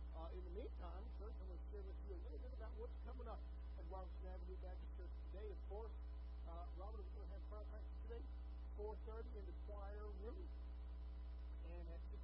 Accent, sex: American, male